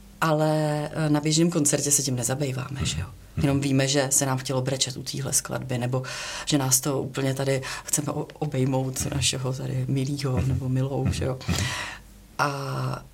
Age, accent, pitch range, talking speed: 30-49, native, 130-150 Hz, 160 wpm